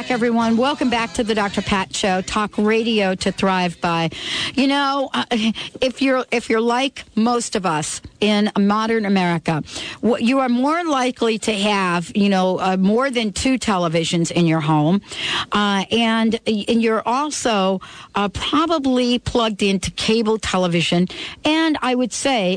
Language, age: English, 60-79